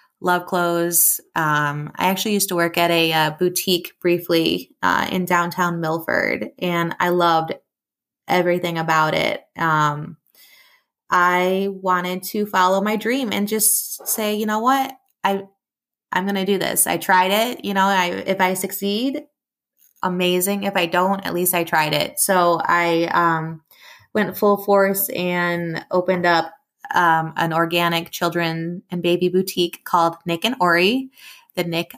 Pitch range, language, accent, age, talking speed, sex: 170-195 Hz, English, American, 20-39, 155 wpm, female